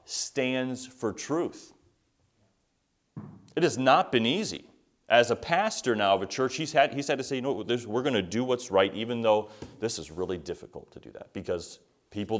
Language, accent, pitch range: English, American, 100-130 Hz